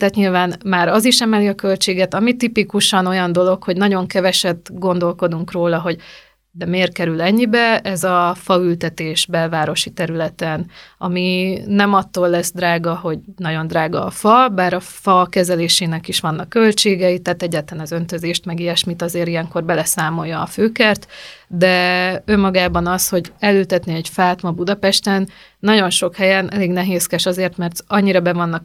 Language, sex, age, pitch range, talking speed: Hungarian, female, 30-49, 170-195 Hz, 155 wpm